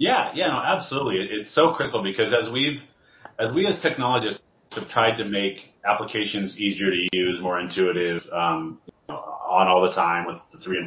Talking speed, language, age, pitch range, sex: 200 wpm, English, 30-49, 95-120 Hz, male